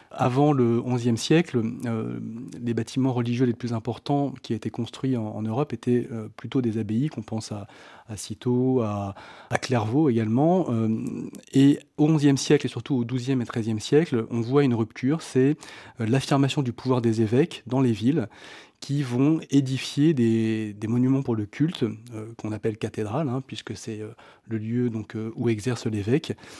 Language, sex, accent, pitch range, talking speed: French, male, French, 115-135 Hz, 180 wpm